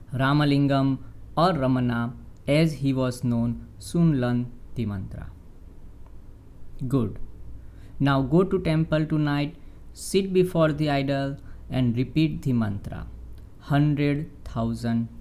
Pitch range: 95-135 Hz